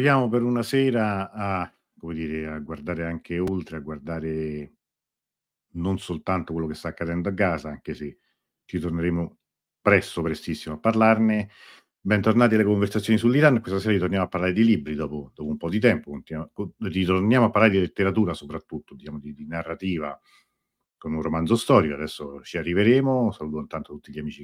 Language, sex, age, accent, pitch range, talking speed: Italian, male, 50-69, native, 75-105 Hz, 165 wpm